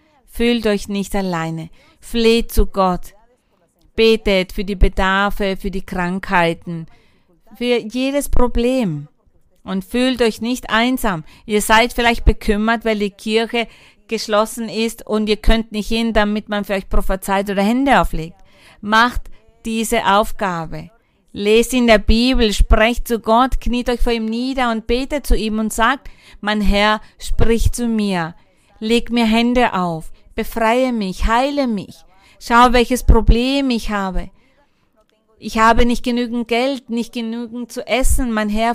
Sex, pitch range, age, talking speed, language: female, 195-235 Hz, 50-69, 145 wpm, German